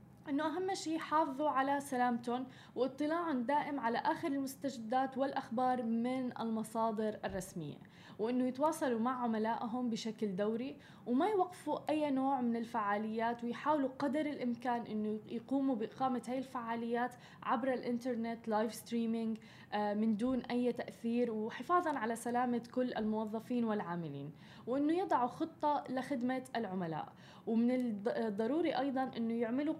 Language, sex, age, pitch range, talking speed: Arabic, female, 10-29, 225-265 Hz, 120 wpm